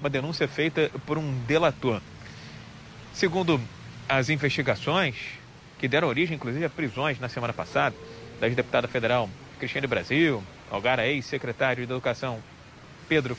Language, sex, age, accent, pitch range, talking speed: English, male, 40-59, Brazilian, 125-155 Hz, 125 wpm